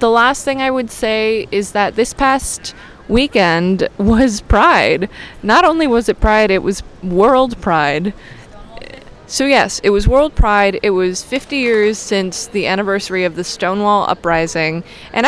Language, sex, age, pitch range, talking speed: English, female, 20-39, 190-240 Hz, 155 wpm